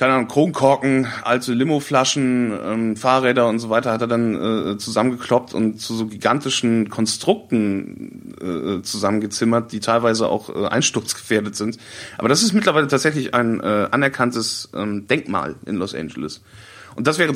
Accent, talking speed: German, 150 wpm